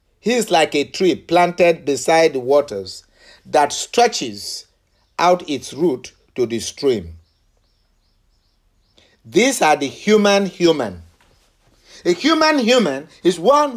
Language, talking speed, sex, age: English, 110 wpm, male, 50-69